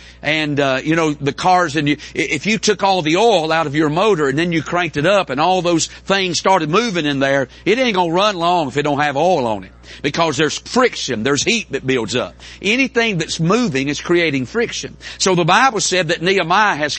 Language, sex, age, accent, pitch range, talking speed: English, male, 50-69, American, 125-185 Hz, 235 wpm